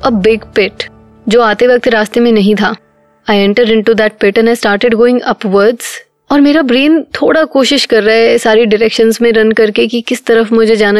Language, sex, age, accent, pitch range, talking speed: Hindi, female, 20-39, native, 210-245 Hz, 60 wpm